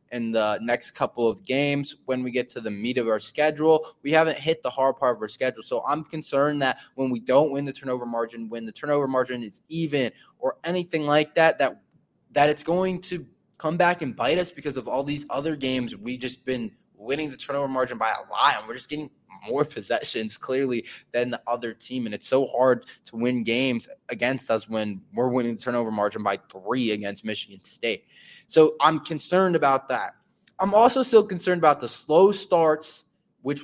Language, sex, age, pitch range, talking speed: English, male, 20-39, 130-175 Hz, 205 wpm